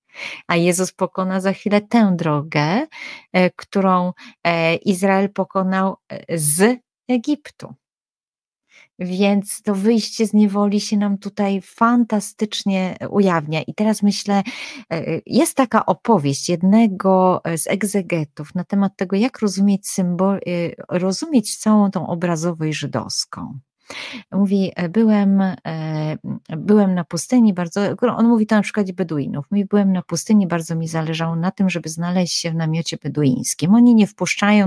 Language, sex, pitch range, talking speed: Polish, female, 165-210 Hz, 125 wpm